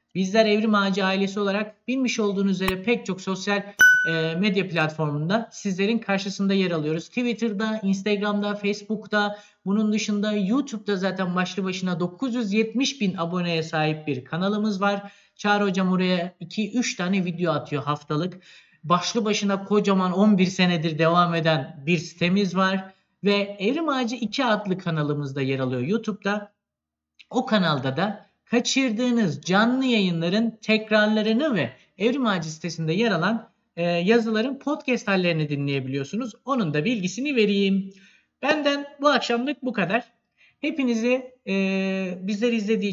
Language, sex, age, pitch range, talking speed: Turkish, male, 50-69, 175-220 Hz, 130 wpm